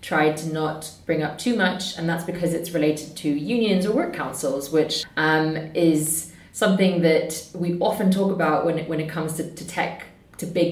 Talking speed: 195 wpm